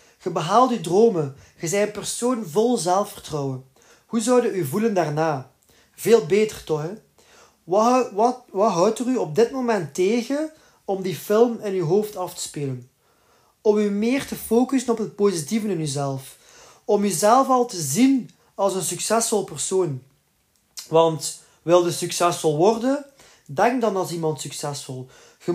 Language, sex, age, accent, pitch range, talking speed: Dutch, male, 30-49, Dutch, 160-225 Hz, 160 wpm